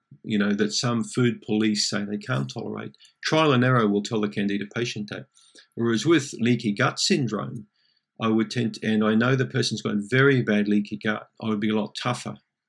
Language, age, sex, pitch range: English, 40-59, male, 105-125 Hz